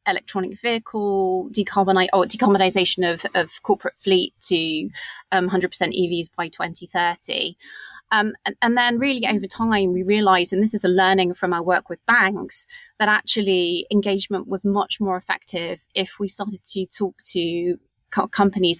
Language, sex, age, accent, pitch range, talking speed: English, female, 30-49, British, 180-215 Hz, 145 wpm